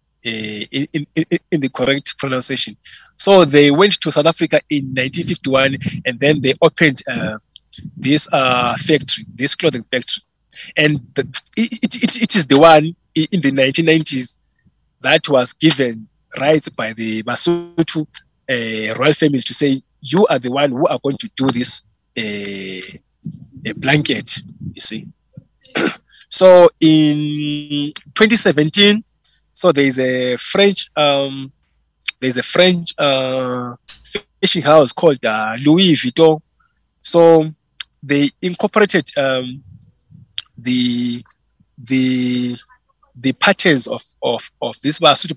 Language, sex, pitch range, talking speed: English, male, 130-170 Hz, 125 wpm